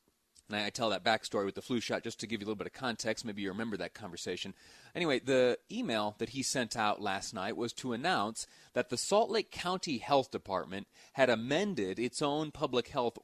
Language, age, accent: English, 30-49, American